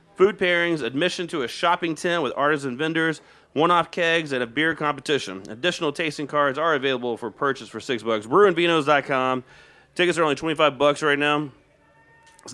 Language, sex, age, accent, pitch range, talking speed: English, male, 30-49, American, 135-160 Hz, 170 wpm